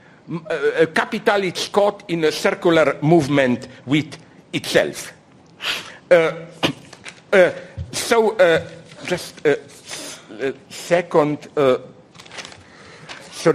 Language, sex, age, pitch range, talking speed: English, male, 50-69, 155-230 Hz, 75 wpm